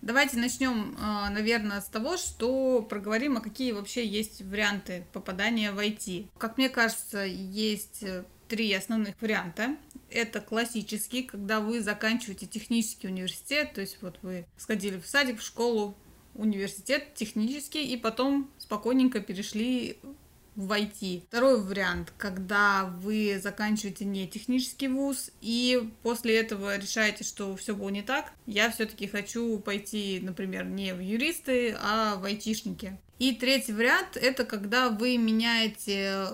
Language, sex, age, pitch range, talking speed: Russian, female, 20-39, 200-245 Hz, 130 wpm